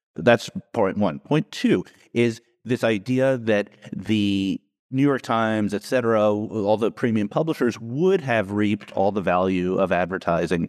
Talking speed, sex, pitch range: 150 wpm, male, 90-120 Hz